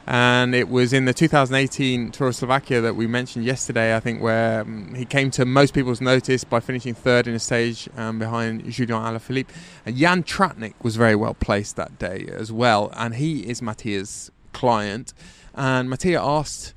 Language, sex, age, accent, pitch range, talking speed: English, male, 20-39, British, 115-140 Hz, 185 wpm